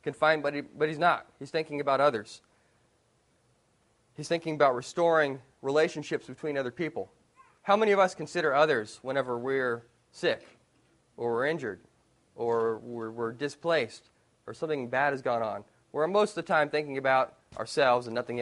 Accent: American